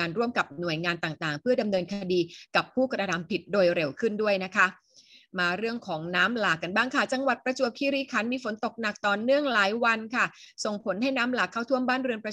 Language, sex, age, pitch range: Thai, female, 30-49, 190-245 Hz